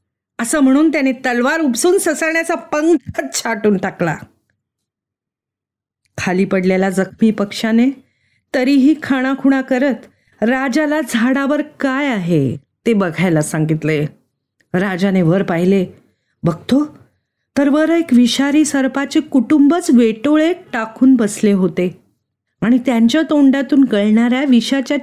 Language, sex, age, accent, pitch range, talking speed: Marathi, female, 40-59, native, 165-255 Hz, 105 wpm